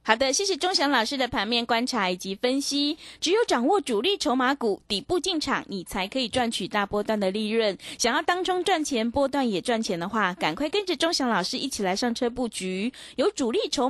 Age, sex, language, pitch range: 20-39, female, Chinese, 215-290 Hz